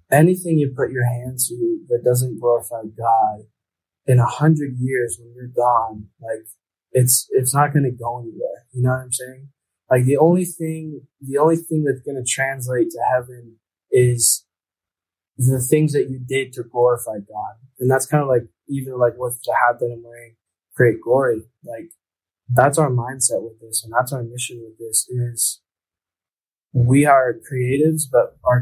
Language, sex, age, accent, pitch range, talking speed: English, male, 20-39, American, 115-135 Hz, 175 wpm